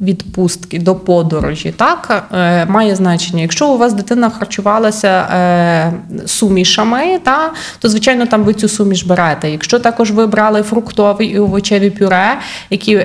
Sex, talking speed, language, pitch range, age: female, 145 wpm, Ukrainian, 185-240 Hz, 20-39